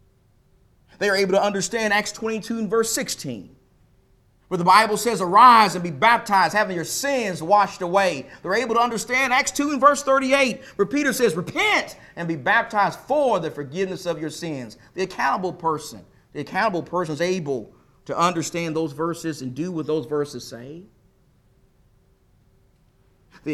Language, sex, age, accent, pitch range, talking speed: English, male, 40-59, American, 160-215 Hz, 165 wpm